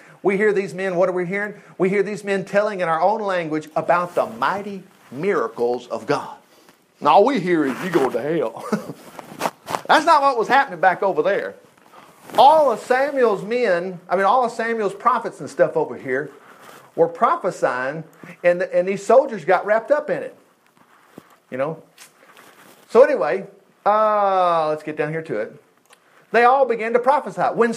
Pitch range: 185-270 Hz